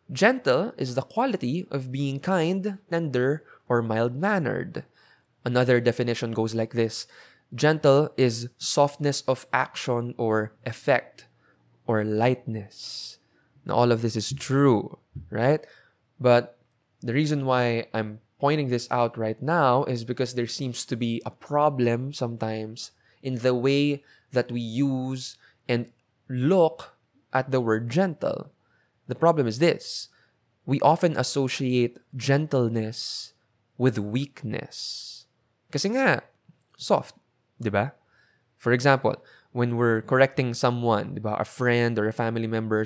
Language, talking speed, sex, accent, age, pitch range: English, 125 wpm, male, Filipino, 20-39, 115-140 Hz